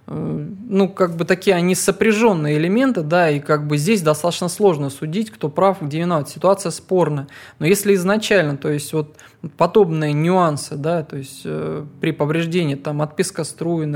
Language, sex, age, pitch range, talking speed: English, male, 20-39, 145-175 Hz, 160 wpm